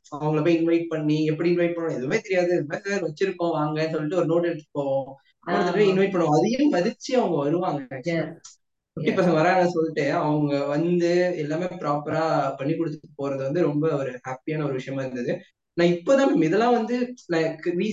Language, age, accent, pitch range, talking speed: English, 20-39, Indian, 150-180 Hz, 65 wpm